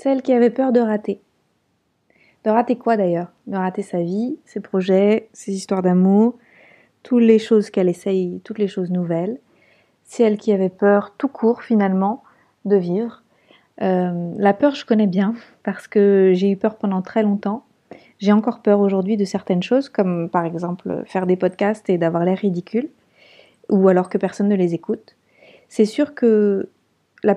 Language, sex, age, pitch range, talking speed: French, female, 30-49, 195-235 Hz, 175 wpm